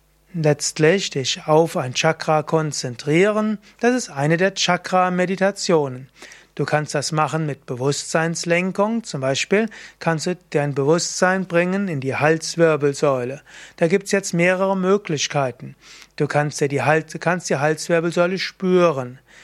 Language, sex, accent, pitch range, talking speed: German, male, German, 150-185 Hz, 115 wpm